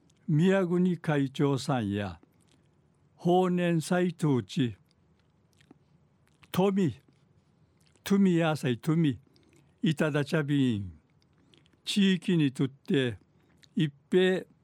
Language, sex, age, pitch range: Japanese, male, 60-79, 130-165 Hz